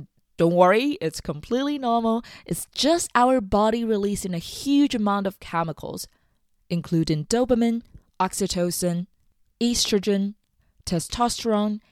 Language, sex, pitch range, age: English, female, 165-220 Hz, 20-39